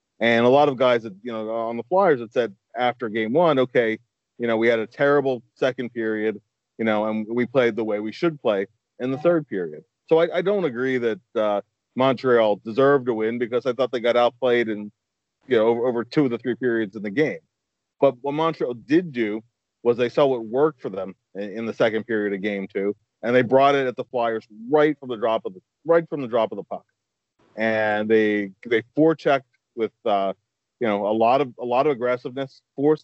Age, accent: 30-49, American